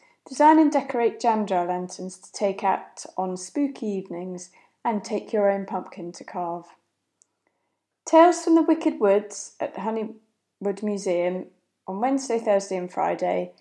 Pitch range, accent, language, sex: 185-230 Hz, British, English, female